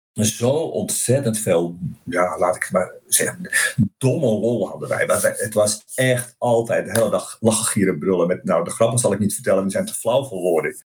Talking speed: 195 wpm